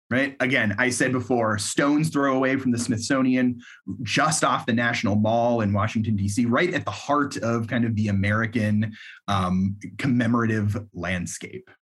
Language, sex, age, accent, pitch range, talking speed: English, male, 30-49, American, 105-145 Hz, 155 wpm